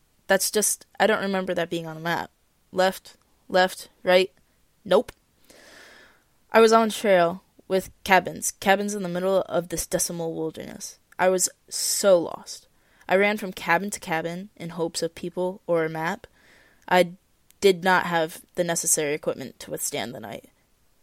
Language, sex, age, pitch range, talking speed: English, female, 20-39, 170-200 Hz, 160 wpm